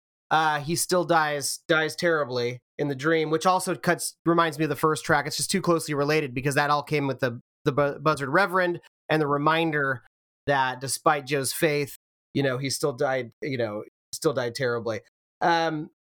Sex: male